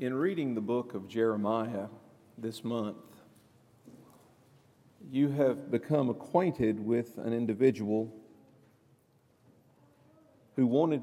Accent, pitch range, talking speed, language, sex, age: American, 115-140 Hz, 95 wpm, English, male, 50-69